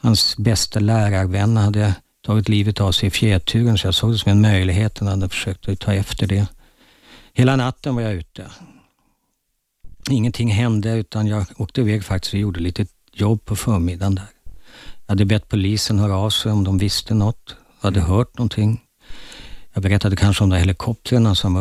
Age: 50-69